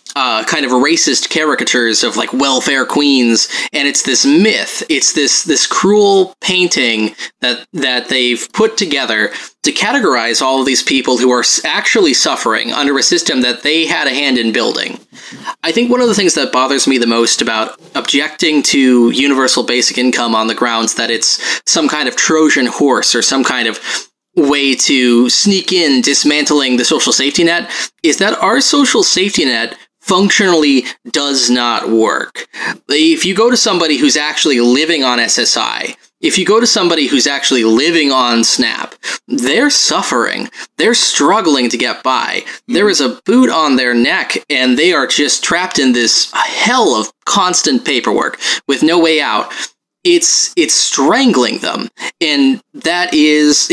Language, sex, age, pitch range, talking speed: English, male, 20-39, 125-195 Hz, 165 wpm